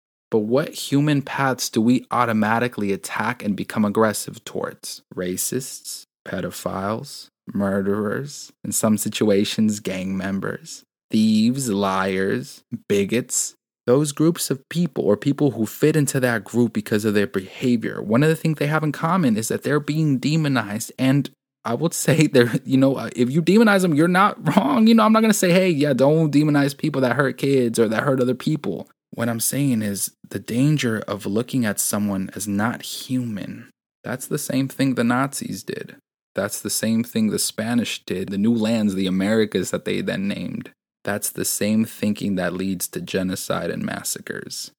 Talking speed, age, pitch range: 175 wpm, 20-39, 105-140 Hz